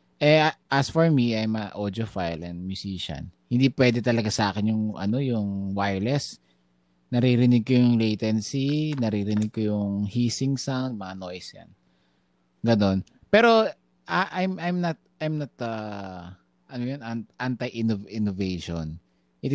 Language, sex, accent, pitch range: Filipino, male, native, 95-130 Hz